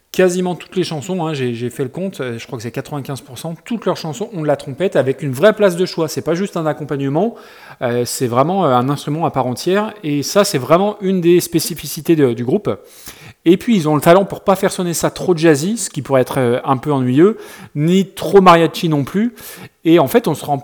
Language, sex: French, male